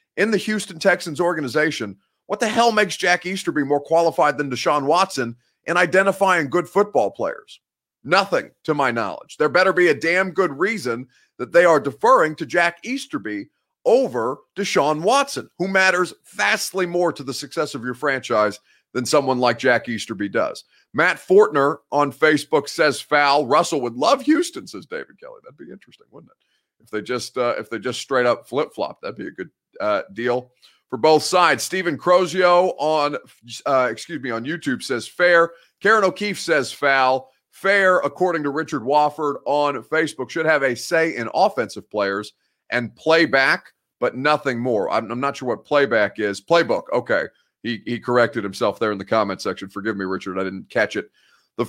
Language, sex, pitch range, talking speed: English, male, 130-180 Hz, 180 wpm